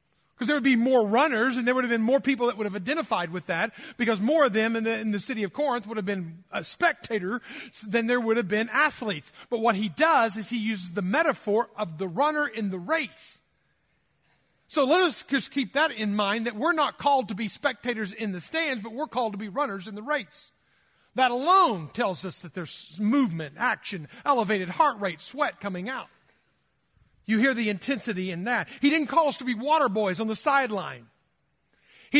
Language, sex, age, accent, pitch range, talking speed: English, male, 40-59, American, 195-275 Hz, 210 wpm